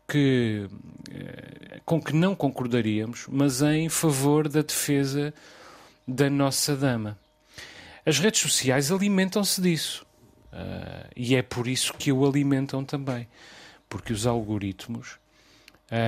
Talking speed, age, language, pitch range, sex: 105 wpm, 40-59, Portuguese, 105-140 Hz, male